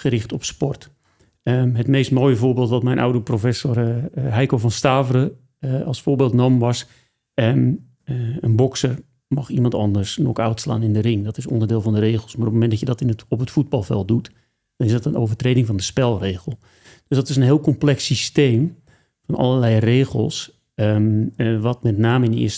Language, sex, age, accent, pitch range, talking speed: Dutch, male, 40-59, Dutch, 110-130 Hz, 205 wpm